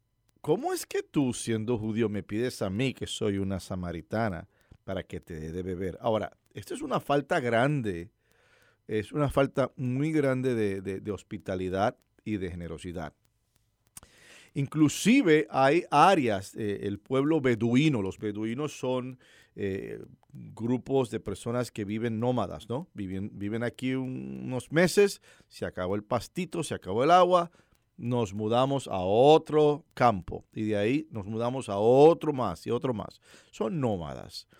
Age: 50-69